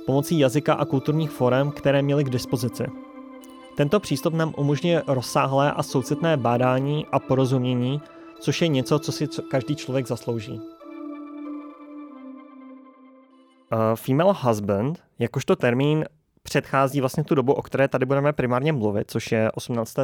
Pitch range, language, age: 120-145 Hz, Czech, 20-39